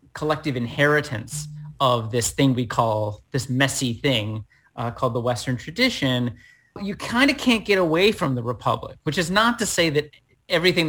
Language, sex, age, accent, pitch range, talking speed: English, male, 30-49, American, 125-155 Hz, 170 wpm